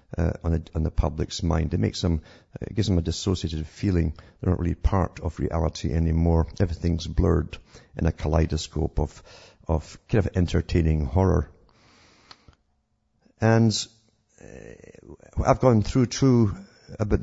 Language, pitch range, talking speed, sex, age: English, 85-105 Hz, 145 wpm, male, 50-69